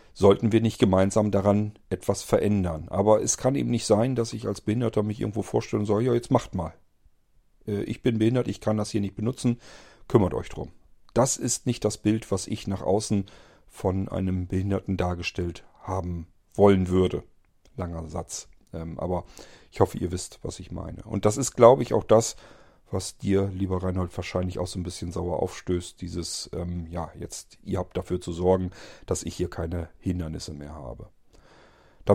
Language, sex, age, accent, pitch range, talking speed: German, male, 40-59, German, 95-125 Hz, 185 wpm